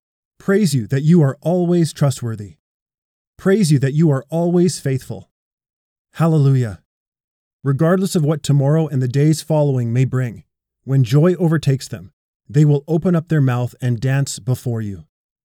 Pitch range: 125-160 Hz